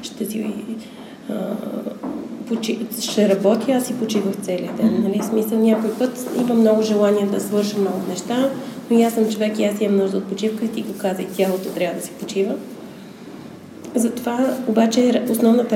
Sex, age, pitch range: female, 20-39, 200-225 Hz